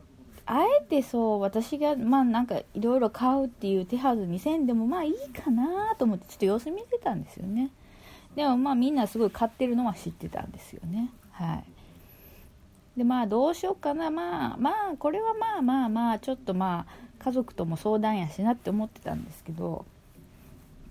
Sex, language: female, Japanese